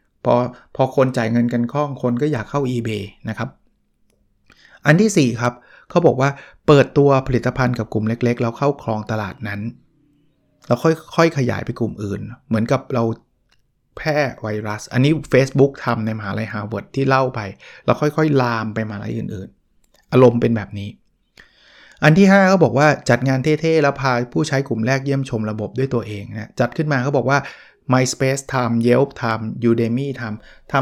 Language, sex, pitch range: Thai, male, 115-140 Hz